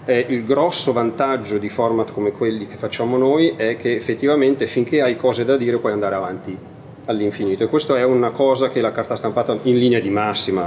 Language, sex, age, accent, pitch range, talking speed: Italian, male, 40-59, native, 110-135 Hz, 200 wpm